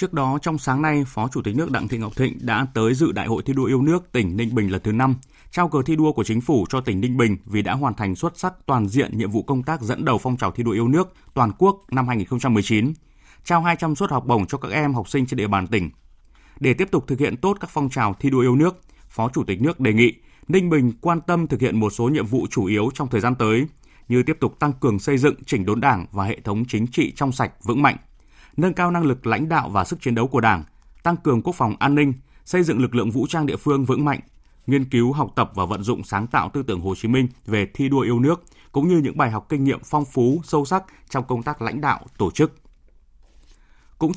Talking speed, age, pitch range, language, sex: 270 wpm, 20-39, 110-145 Hz, Vietnamese, male